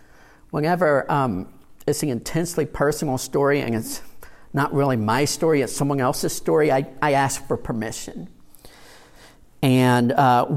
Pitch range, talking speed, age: 120-155 Hz, 135 wpm, 50-69